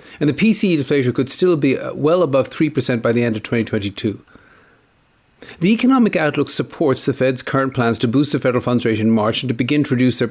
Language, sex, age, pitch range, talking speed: English, male, 50-69, 120-150 Hz, 210 wpm